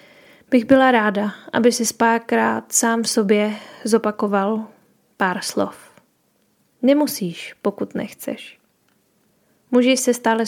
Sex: female